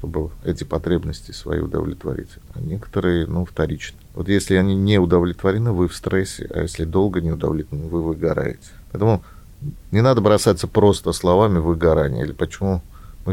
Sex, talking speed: male, 155 wpm